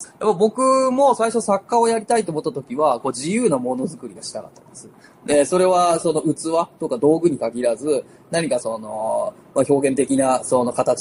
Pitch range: 130-210 Hz